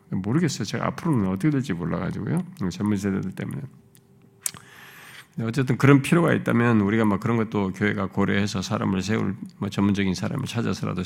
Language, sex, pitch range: Korean, male, 100-150 Hz